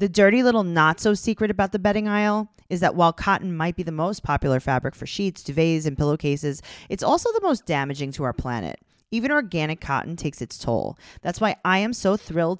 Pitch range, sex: 150-210 Hz, female